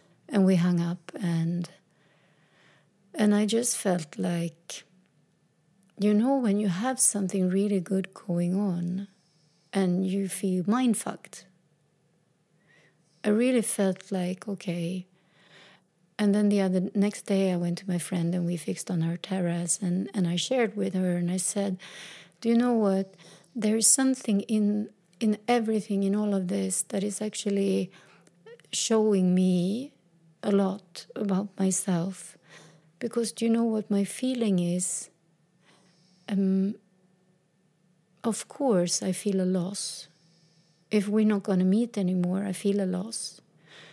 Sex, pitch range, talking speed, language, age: female, 175-210 Hz, 145 wpm, English, 30-49